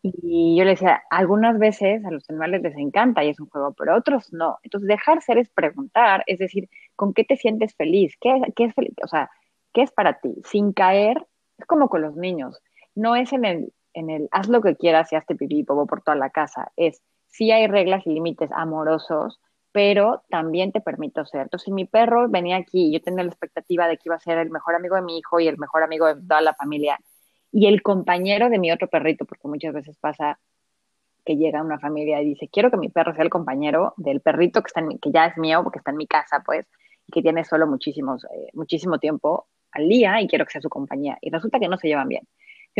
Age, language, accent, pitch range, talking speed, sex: 30-49, Spanish, Mexican, 155-210 Hz, 240 wpm, female